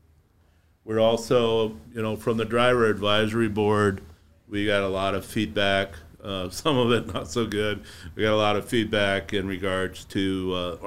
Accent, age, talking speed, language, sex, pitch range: American, 50-69, 175 wpm, English, male, 90-105 Hz